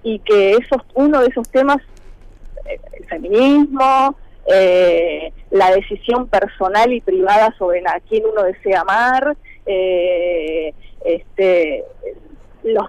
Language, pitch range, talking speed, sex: Spanish, 205-320 Hz, 110 wpm, female